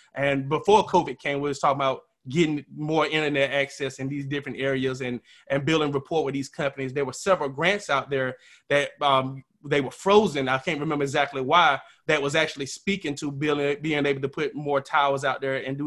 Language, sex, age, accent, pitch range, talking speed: English, male, 20-39, American, 140-160 Hz, 210 wpm